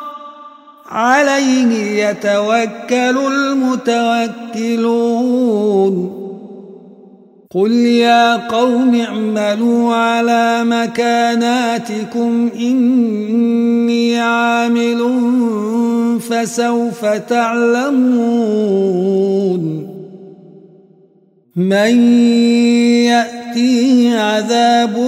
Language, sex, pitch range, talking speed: Arabic, male, 215-235 Hz, 35 wpm